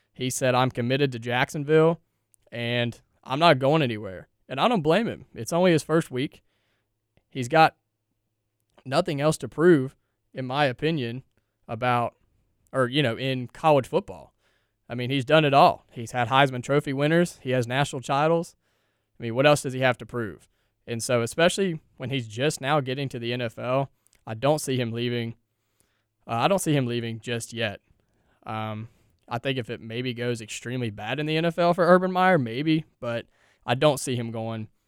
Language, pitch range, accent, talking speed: English, 110-140 Hz, American, 185 wpm